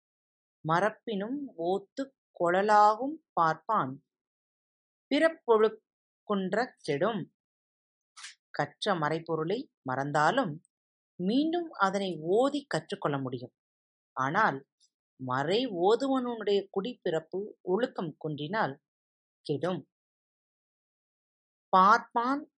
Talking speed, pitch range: 55 wpm, 165-235 Hz